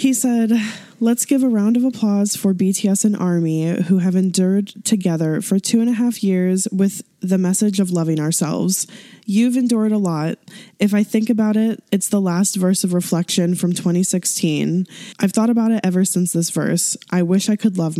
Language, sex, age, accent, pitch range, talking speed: English, female, 10-29, American, 180-215 Hz, 195 wpm